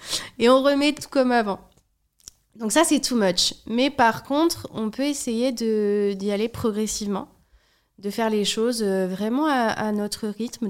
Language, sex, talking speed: French, female, 170 wpm